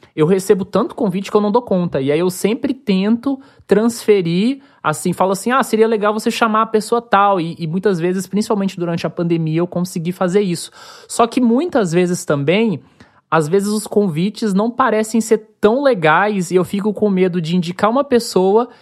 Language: Portuguese